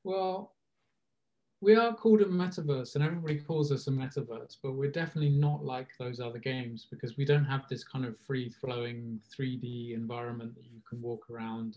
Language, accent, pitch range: English, British, 115-140 Hz